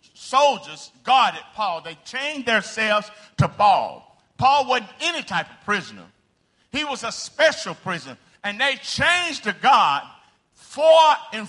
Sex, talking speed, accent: male, 140 wpm, American